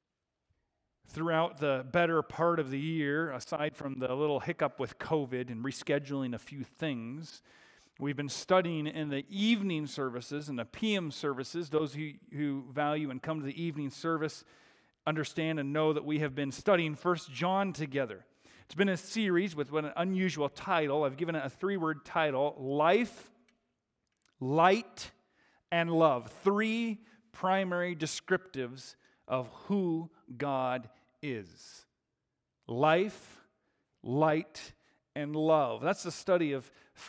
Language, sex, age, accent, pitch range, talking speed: English, male, 40-59, American, 135-175 Hz, 140 wpm